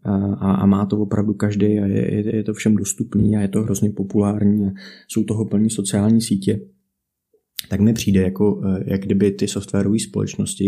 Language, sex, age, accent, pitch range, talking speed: Czech, male, 20-39, native, 100-115 Hz, 175 wpm